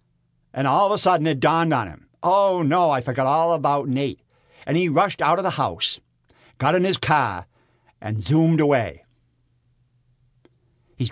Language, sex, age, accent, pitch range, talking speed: English, male, 60-79, American, 120-155 Hz, 165 wpm